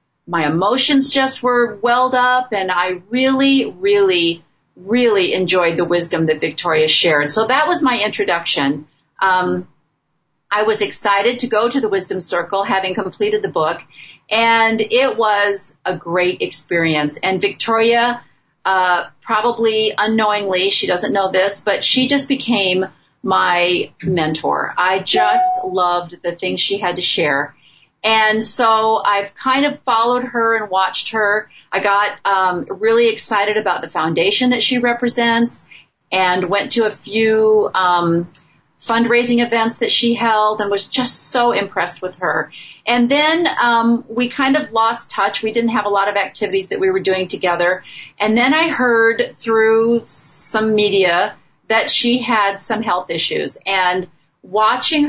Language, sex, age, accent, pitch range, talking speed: English, female, 40-59, American, 185-240 Hz, 150 wpm